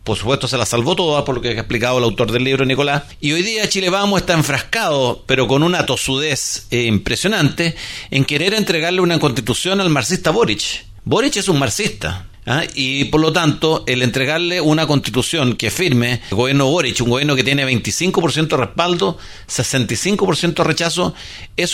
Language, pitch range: Spanish, 130-170 Hz